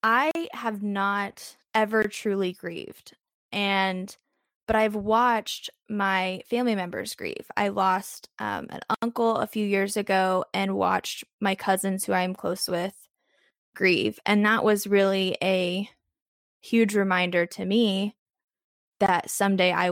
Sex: female